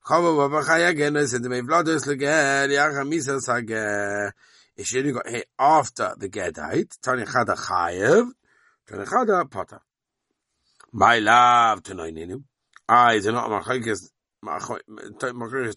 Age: 50-69